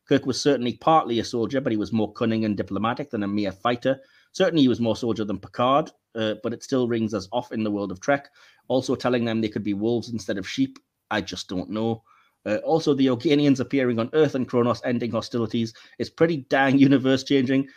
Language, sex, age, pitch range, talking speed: English, male, 30-49, 115-140 Hz, 220 wpm